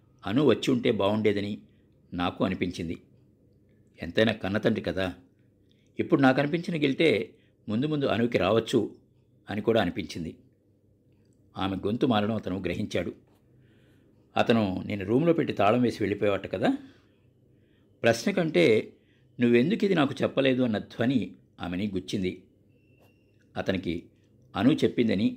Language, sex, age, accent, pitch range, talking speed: Telugu, male, 50-69, native, 100-125 Hz, 110 wpm